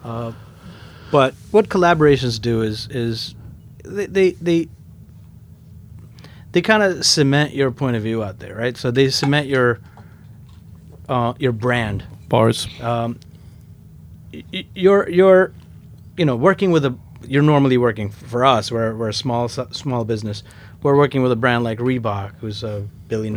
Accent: American